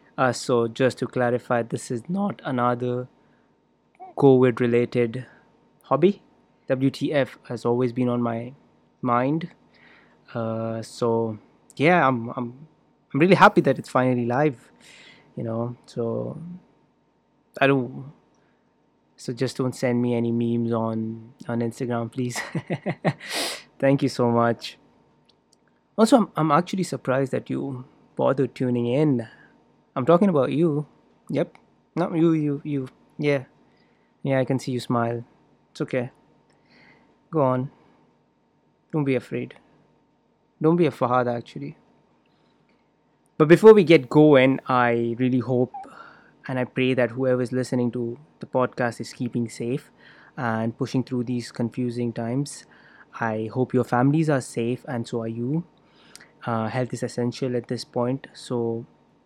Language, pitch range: English, 120-140 Hz